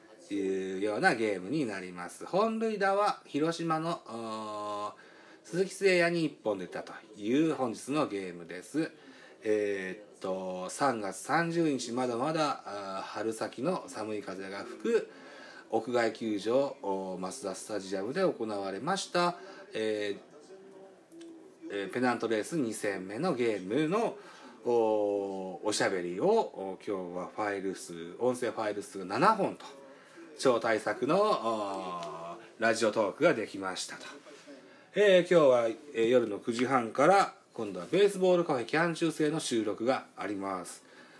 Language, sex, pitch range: Japanese, male, 105-165 Hz